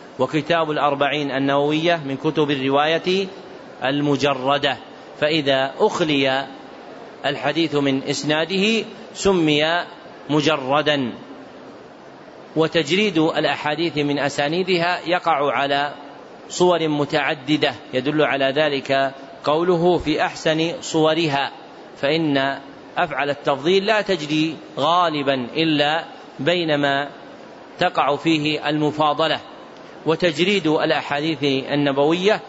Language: Arabic